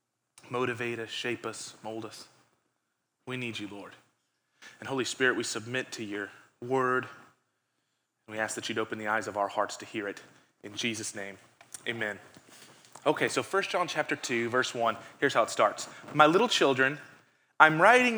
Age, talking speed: 30-49, 175 wpm